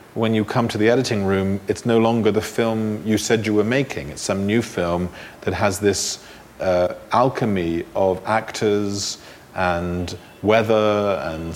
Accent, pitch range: British, 100-115 Hz